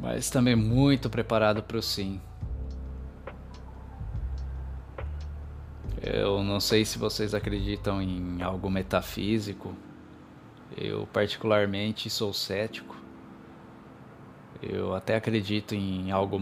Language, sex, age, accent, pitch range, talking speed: Portuguese, male, 20-39, Brazilian, 95-110 Hz, 90 wpm